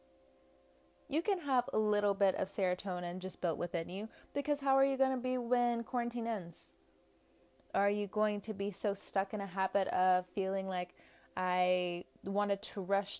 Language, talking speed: English, 175 wpm